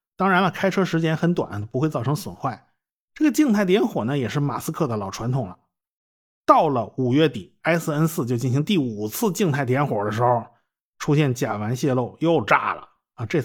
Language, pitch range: Chinese, 120-175 Hz